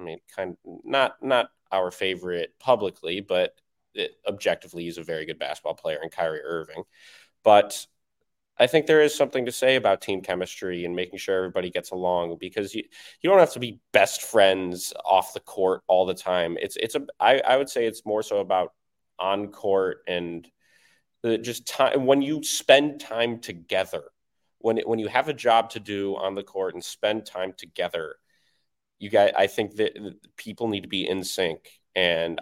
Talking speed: 185 wpm